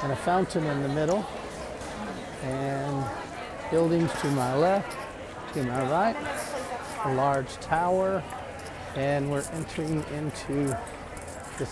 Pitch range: 125-150 Hz